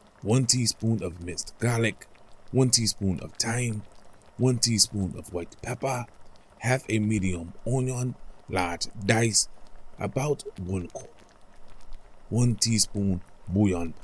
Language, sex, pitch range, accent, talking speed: English, male, 100-120 Hz, American, 110 wpm